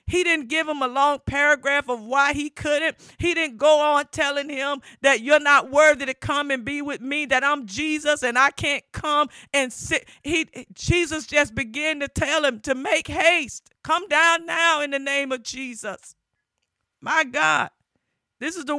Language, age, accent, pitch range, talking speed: English, 50-69, American, 245-290 Hz, 190 wpm